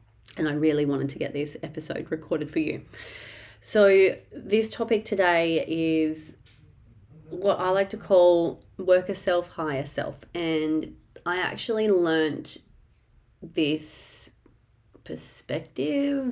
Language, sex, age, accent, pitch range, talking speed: English, female, 30-49, Australian, 150-180 Hz, 115 wpm